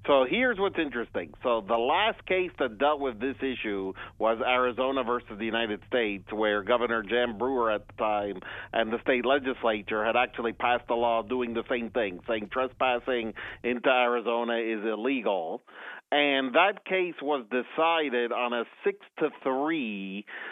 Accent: American